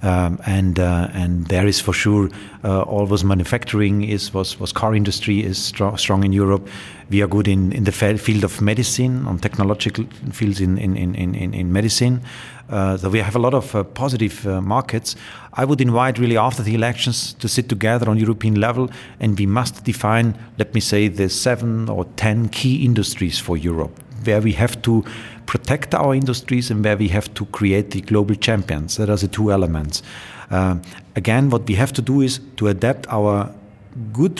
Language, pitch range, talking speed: Dutch, 100-125 Hz, 195 wpm